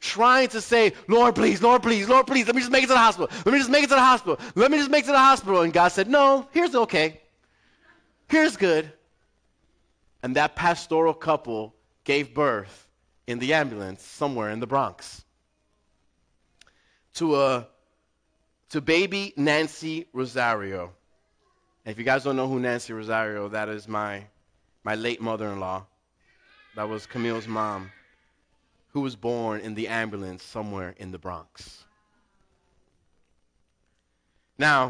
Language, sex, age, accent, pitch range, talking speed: English, male, 30-49, American, 100-160 Hz, 155 wpm